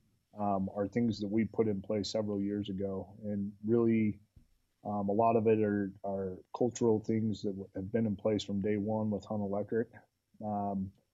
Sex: male